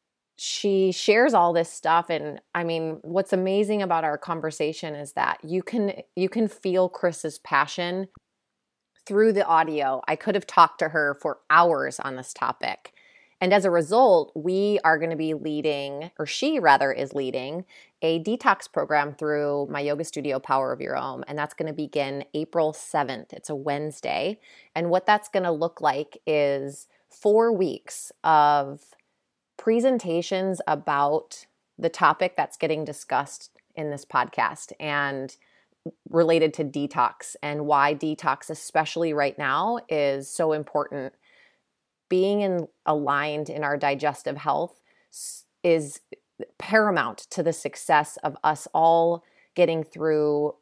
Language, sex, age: English, female, 20-39